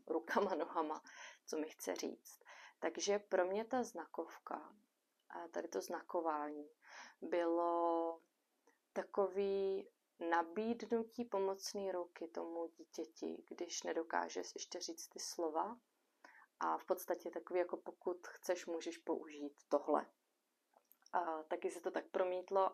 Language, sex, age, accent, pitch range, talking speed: Czech, female, 30-49, native, 160-190 Hz, 115 wpm